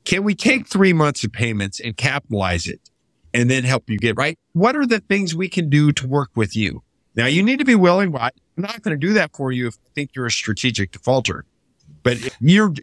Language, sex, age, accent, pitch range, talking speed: English, male, 50-69, American, 110-155 Hz, 240 wpm